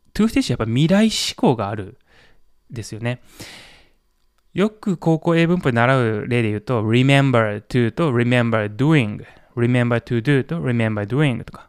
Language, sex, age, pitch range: Japanese, male, 20-39, 115-155 Hz